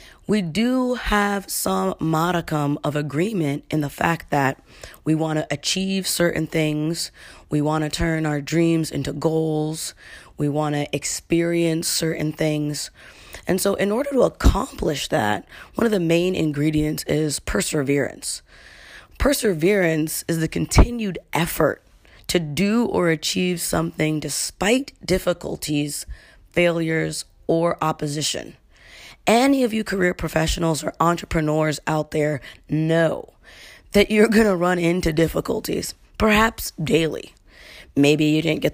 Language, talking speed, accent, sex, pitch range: English, 130 wpm, American, female, 150-175 Hz